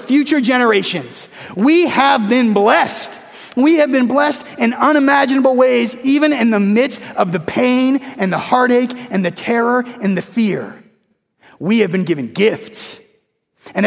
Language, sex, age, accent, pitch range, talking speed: English, male, 30-49, American, 200-250 Hz, 150 wpm